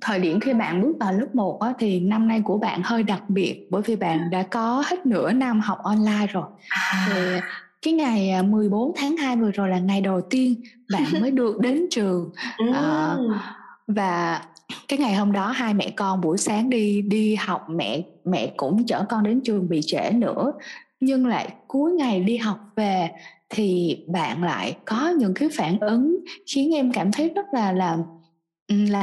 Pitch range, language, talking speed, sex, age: 190-255 Hz, Vietnamese, 185 wpm, female, 20-39